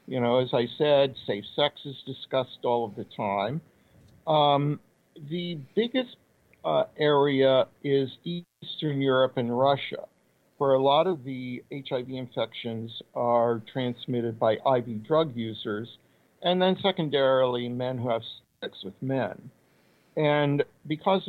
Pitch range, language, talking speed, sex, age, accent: 125-150 Hz, English, 130 wpm, male, 50-69, American